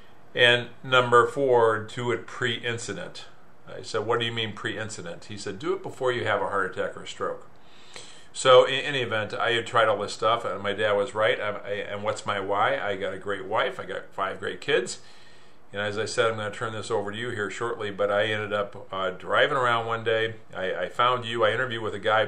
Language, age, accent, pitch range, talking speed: English, 50-69, American, 100-120 Hz, 230 wpm